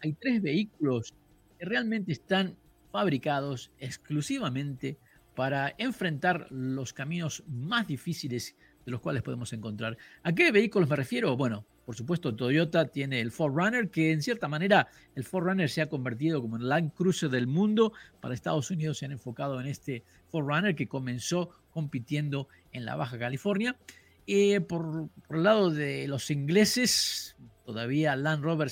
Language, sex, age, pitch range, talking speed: Spanish, male, 50-69, 130-180 Hz, 155 wpm